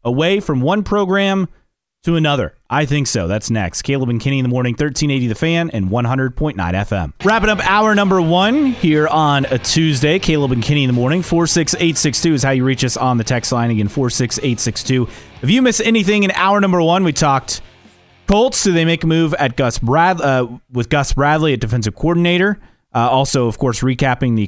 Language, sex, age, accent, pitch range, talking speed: English, male, 30-49, American, 115-165 Hz, 200 wpm